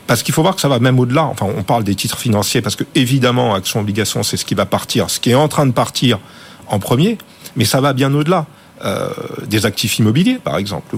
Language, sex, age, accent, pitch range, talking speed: French, male, 50-69, French, 105-140 Hz, 235 wpm